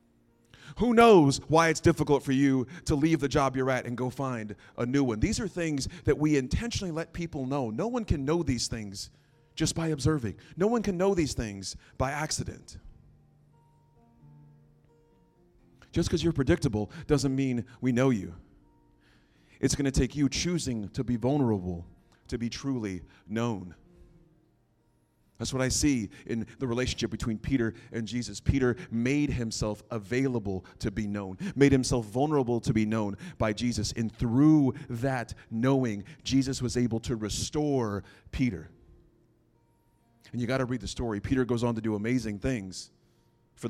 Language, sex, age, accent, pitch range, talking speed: English, male, 30-49, American, 115-145 Hz, 160 wpm